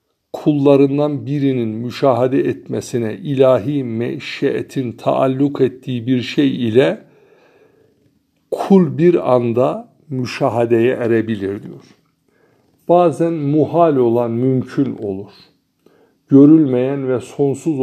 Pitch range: 120-145 Hz